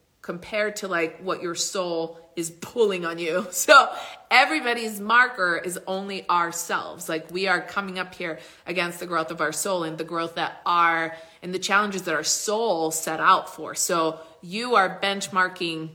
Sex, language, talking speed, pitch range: female, English, 175 wpm, 170-215 Hz